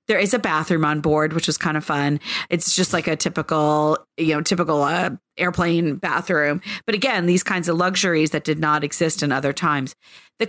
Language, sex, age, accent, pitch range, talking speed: English, female, 40-59, American, 160-210 Hz, 205 wpm